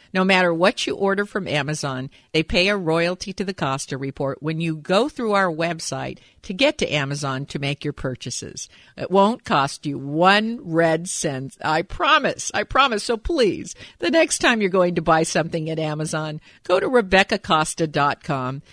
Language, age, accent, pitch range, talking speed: English, 50-69, American, 140-190 Hz, 175 wpm